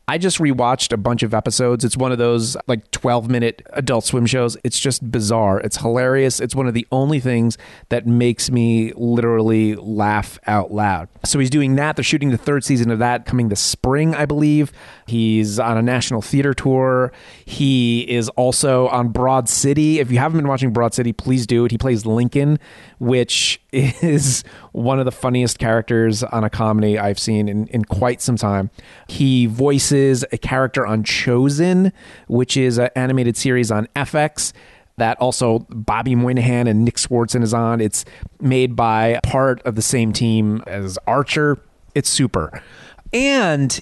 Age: 30-49